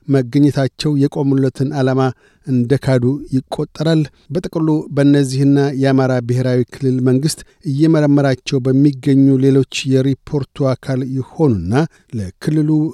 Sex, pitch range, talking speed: male, 130-150 Hz, 85 wpm